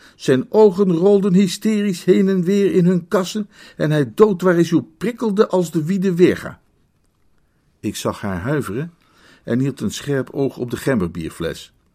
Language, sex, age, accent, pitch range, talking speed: Dutch, male, 50-69, Dutch, 125-210 Hz, 165 wpm